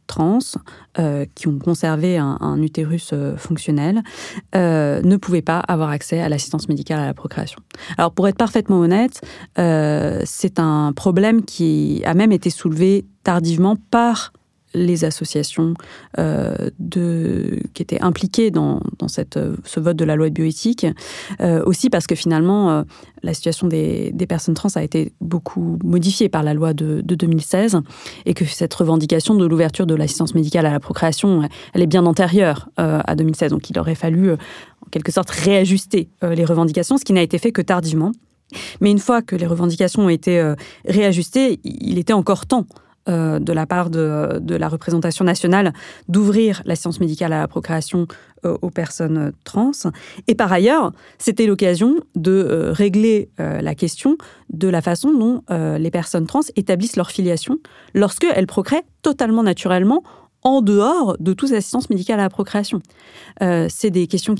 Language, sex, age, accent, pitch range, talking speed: French, female, 30-49, French, 165-205 Hz, 175 wpm